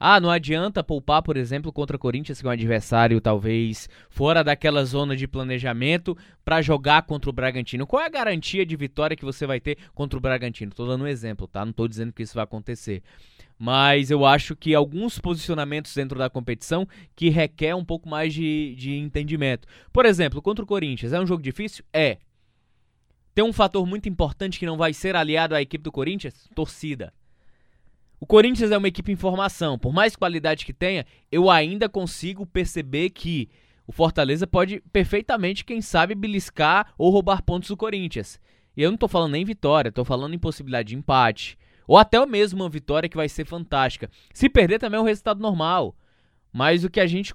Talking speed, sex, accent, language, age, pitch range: 195 wpm, male, Brazilian, Portuguese, 20-39, 135-185 Hz